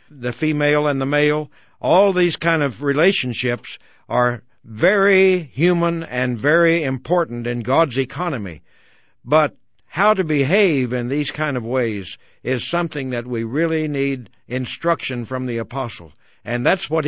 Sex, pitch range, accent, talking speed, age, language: male, 120-155 Hz, American, 145 wpm, 60-79, English